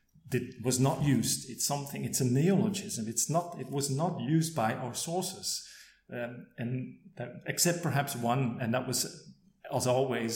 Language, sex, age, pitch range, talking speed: English, male, 40-59, 115-140 Hz, 170 wpm